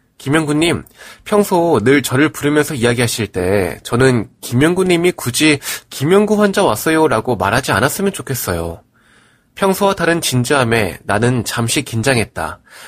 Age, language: 20-39, Korean